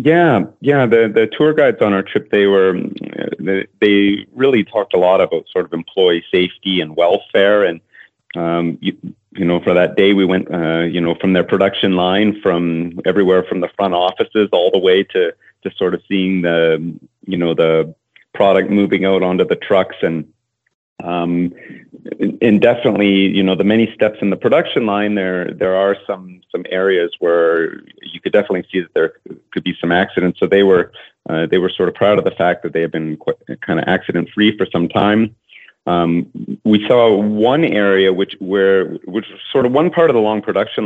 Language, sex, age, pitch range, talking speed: English, male, 30-49, 90-105 Hz, 200 wpm